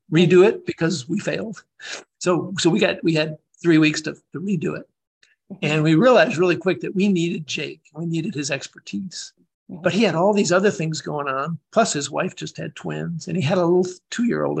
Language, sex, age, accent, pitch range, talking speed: English, male, 60-79, American, 150-190 Hz, 210 wpm